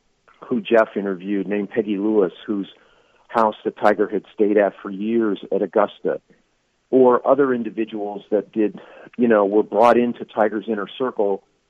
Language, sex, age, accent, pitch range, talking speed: English, male, 40-59, American, 100-120 Hz, 155 wpm